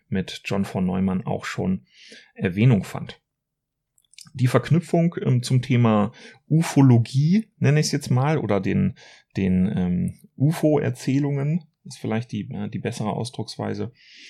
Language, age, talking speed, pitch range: German, 30-49, 125 wpm, 100-135 Hz